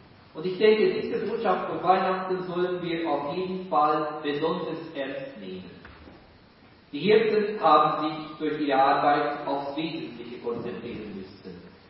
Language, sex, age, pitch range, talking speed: German, male, 40-59, 140-180 Hz, 130 wpm